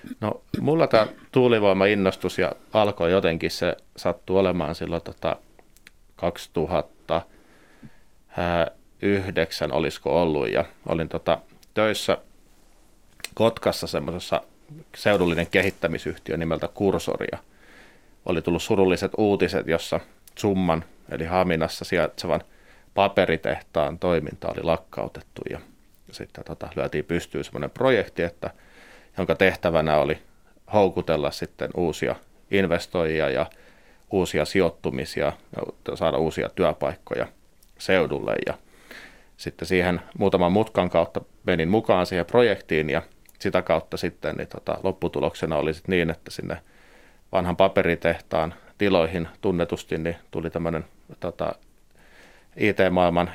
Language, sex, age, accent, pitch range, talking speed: Finnish, male, 30-49, native, 80-95 Hz, 95 wpm